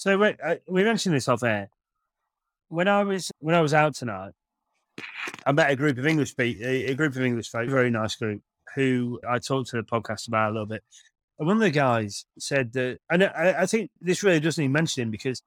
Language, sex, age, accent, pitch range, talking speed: English, male, 30-49, British, 115-135 Hz, 230 wpm